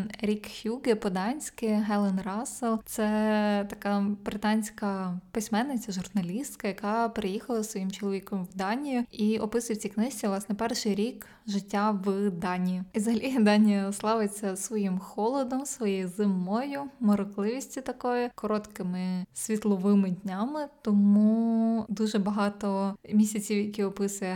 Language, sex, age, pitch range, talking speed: Ukrainian, female, 20-39, 195-220 Hz, 110 wpm